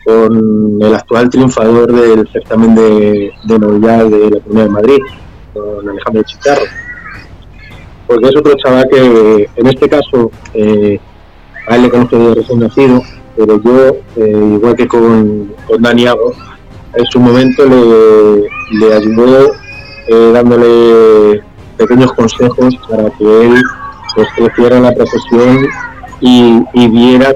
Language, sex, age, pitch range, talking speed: Spanish, male, 30-49, 105-125 Hz, 135 wpm